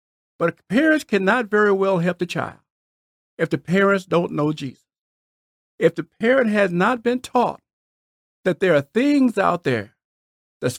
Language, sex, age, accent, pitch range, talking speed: English, male, 50-69, American, 165-245 Hz, 155 wpm